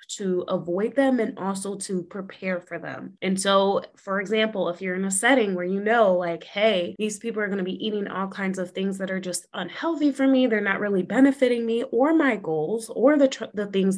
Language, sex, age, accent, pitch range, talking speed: English, female, 20-39, American, 190-255 Hz, 230 wpm